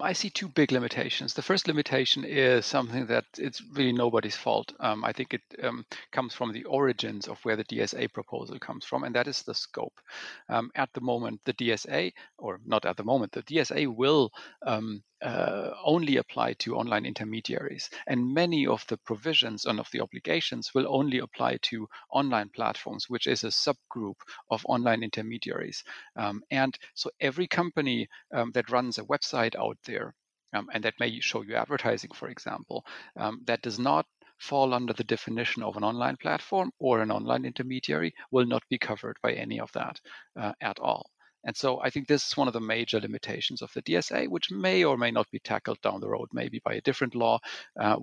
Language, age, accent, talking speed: English, 50-69, German, 195 wpm